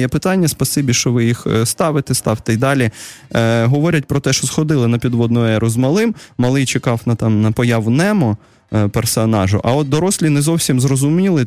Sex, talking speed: male, 185 wpm